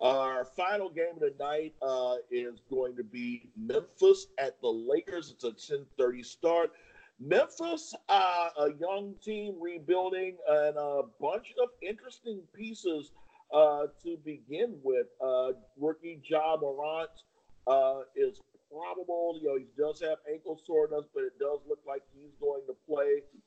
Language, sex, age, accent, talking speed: English, male, 50-69, American, 150 wpm